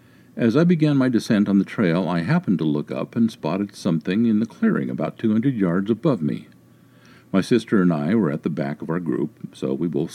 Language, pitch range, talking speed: English, 75-115 Hz, 230 wpm